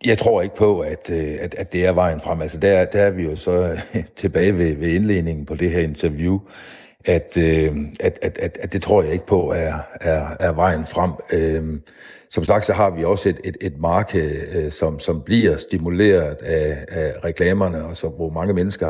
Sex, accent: male, native